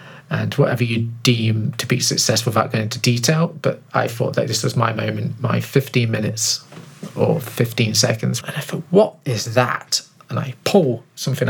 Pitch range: 120-150 Hz